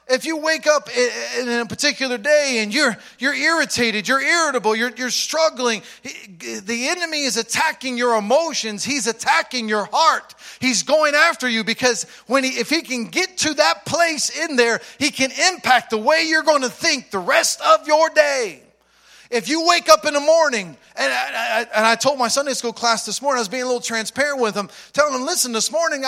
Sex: male